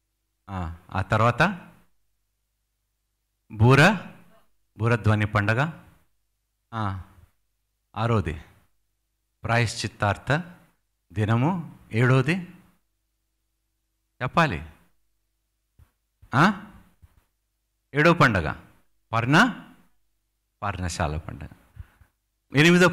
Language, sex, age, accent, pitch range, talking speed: Telugu, male, 50-69, native, 100-115 Hz, 40 wpm